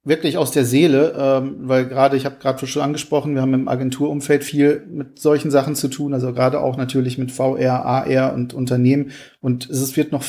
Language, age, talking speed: German, 40-59, 200 wpm